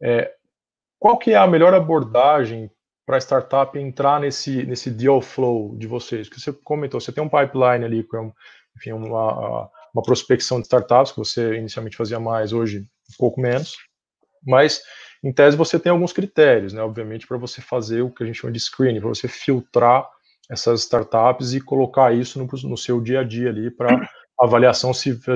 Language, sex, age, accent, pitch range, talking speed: Portuguese, male, 20-39, Brazilian, 115-145 Hz, 185 wpm